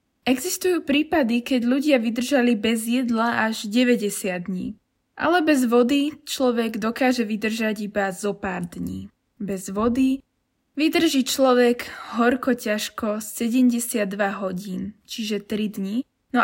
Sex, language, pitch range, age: female, Slovak, 210-255 Hz, 20-39